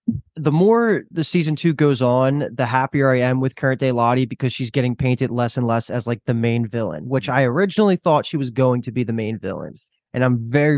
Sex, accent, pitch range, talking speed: male, American, 120-140 Hz, 235 wpm